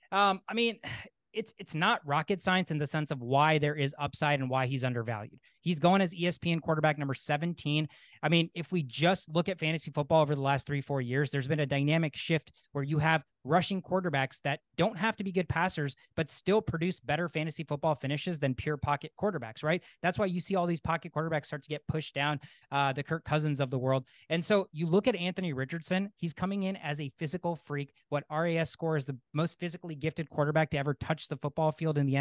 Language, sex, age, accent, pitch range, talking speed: English, male, 20-39, American, 145-180 Hz, 225 wpm